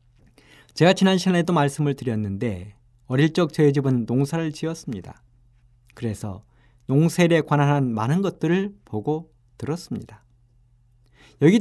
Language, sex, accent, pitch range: Korean, male, native, 120-165 Hz